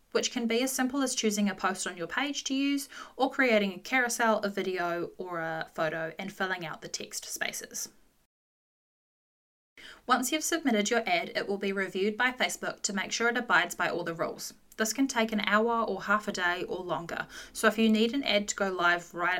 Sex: female